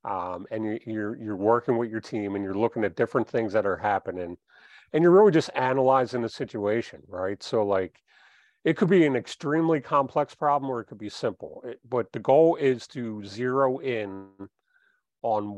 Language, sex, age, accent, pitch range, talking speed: English, male, 40-59, American, 105-135 Hz, 185 wpm